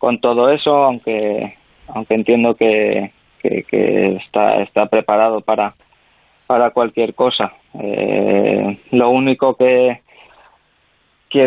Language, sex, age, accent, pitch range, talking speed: Spanish, male, 20-39, Spanish, 110-125 Hz, 110 wpm